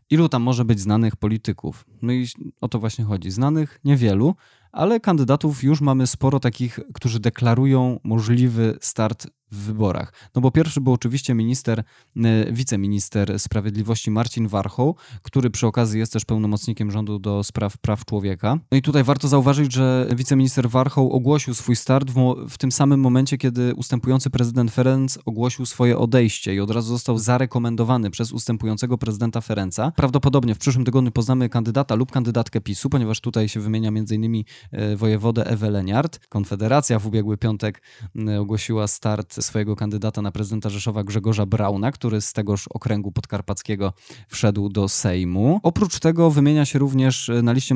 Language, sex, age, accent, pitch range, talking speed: Polish, male, 20-39, native, 110-130 Hz, 155 wpm